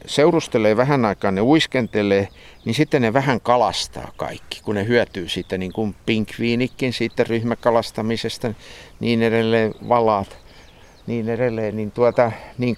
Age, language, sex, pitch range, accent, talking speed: 50-69, Finnish, male, 100-130 Hz, native, 130 wpm